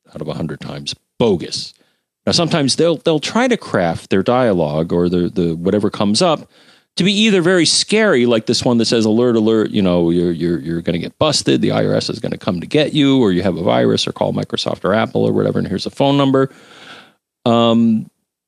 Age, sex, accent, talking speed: 40-59, male, American, 225 wpm